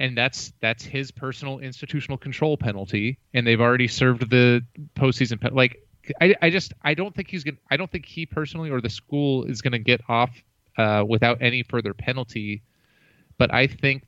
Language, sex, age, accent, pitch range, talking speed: English, male, 30-49, American, 115-135 Hz, 190 wpm